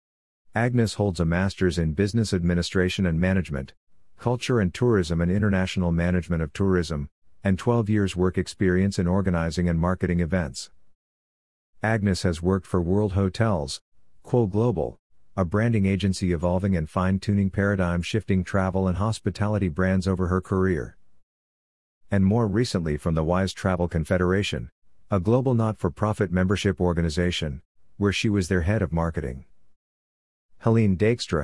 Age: 50-69